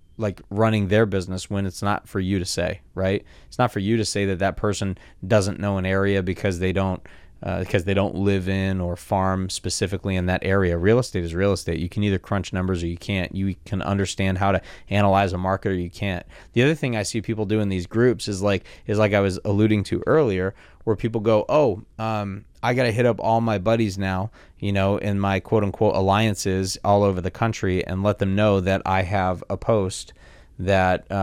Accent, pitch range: American, 95-110 Hz